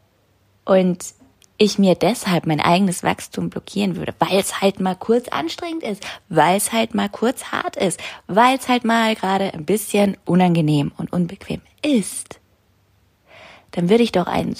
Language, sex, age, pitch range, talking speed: German, female, 20-39, 165-215 Hz, 160 wpm